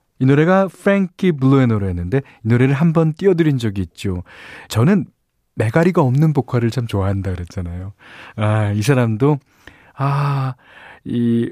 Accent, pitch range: native, 100-155 Hz